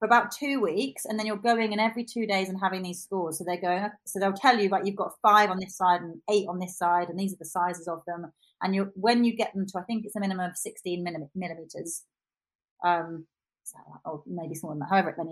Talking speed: 245 wpm